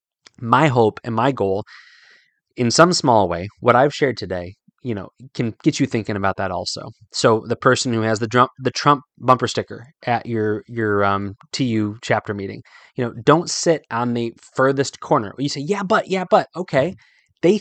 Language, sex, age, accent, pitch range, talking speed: English, male, 20-39, American, 110-145 Hz, 200 wpm